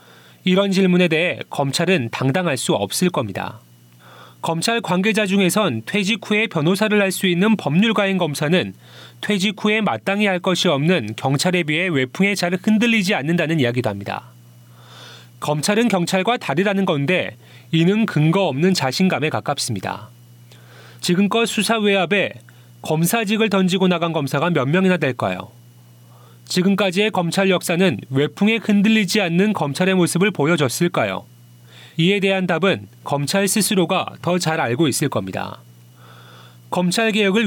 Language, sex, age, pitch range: Korean, male, 30-49, 130-195 Hz